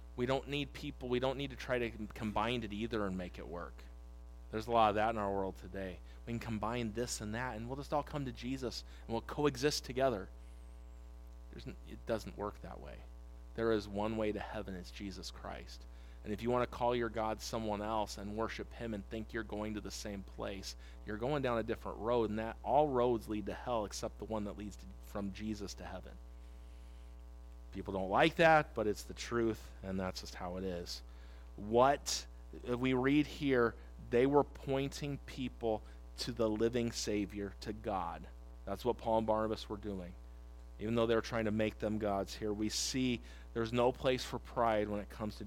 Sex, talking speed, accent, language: male, 210 wpm, American, English